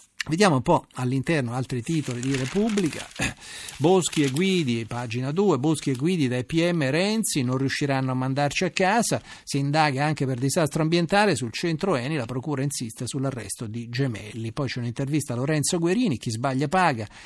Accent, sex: native, male